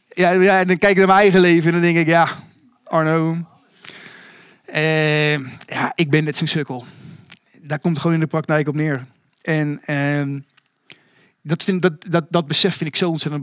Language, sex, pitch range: Dutch, male, 145-180 Hz